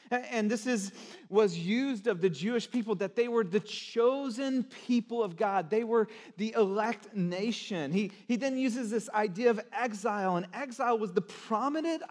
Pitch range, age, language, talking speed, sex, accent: 175-235 Hz, 40-59, English, 175 wpm, male, American